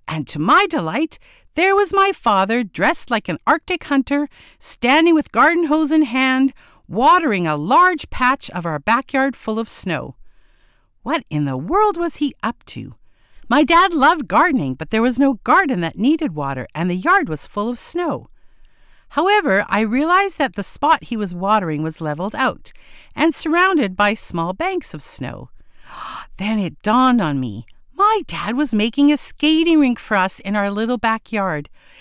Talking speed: 175 wpm